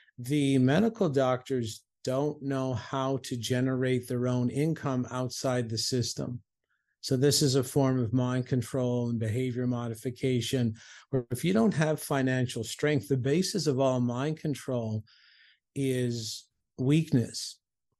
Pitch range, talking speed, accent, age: 125-150 Hz, 135 wpm, American, 50-69